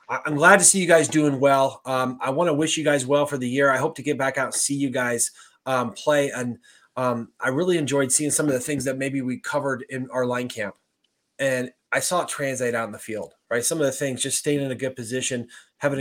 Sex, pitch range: male, 120-145 Hz